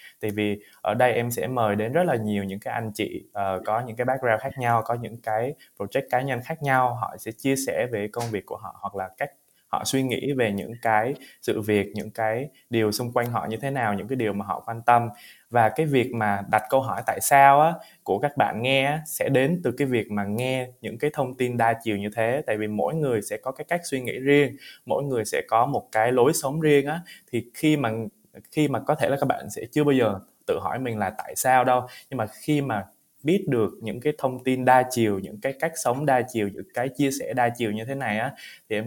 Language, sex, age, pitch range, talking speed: Vietnamese, male, 20-39, 110-135 Hz, 260 wpm